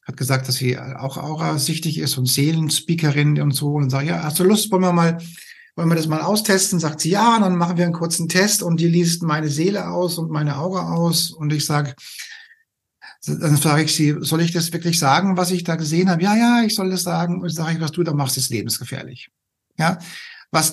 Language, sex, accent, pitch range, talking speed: German, male, German, 150-175 Hz, 235 wpm